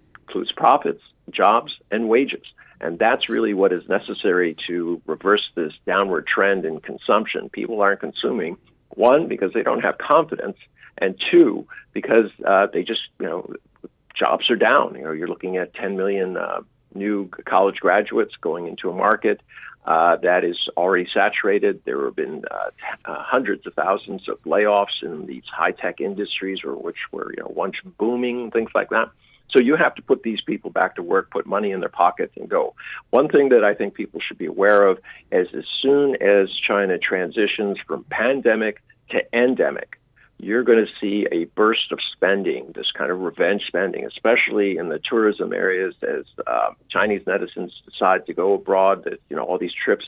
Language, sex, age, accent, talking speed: English, male, 50-69, American, 180 wpm